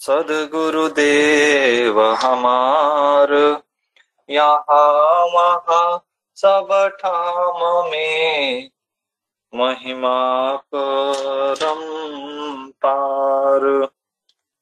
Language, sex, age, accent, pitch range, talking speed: Hindi, male, 20-39, native, 135-160 Hz, 40 wpm